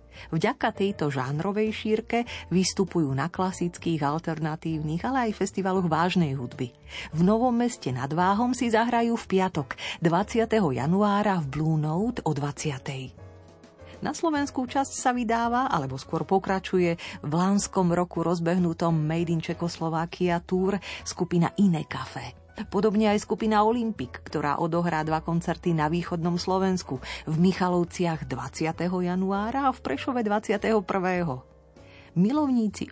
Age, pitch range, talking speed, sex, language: 40-59, 155-210 Hz, 125 wpm, female, Slovak